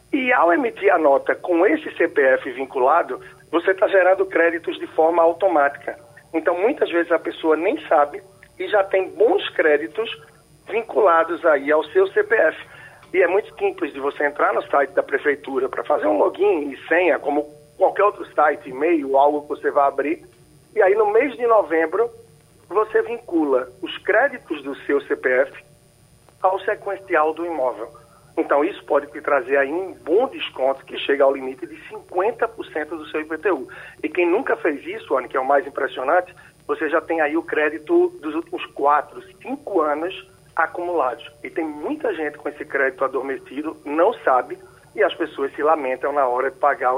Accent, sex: Brazilian, male